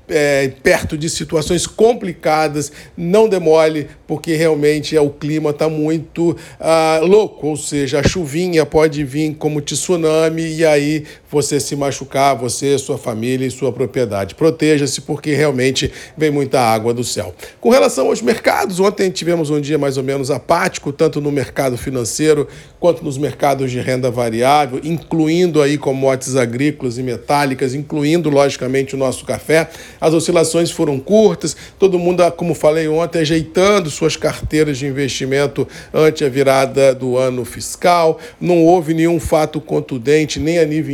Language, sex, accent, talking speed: Portuguese, male, Brazilian, 155 wpm